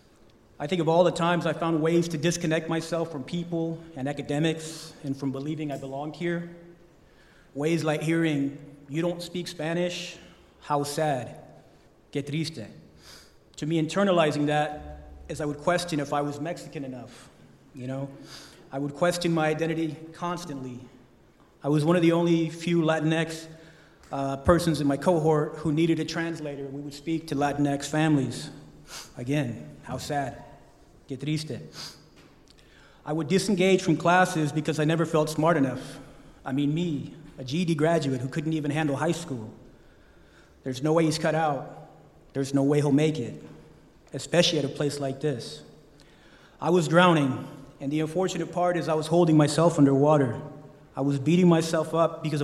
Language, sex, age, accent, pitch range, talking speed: English, male, 30-49, American, 140-165 Hz, 160 wpm